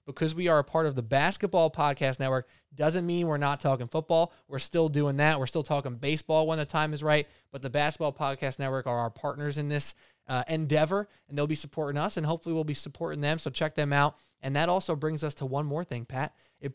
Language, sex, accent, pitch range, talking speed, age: English, male, American, 140-175 Hz, 240 wpm, 20-39